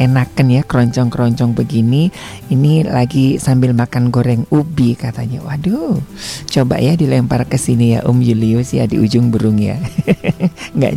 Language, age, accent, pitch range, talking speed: Indonesian, 40-59, native, 120-175 Hz, 155 wpm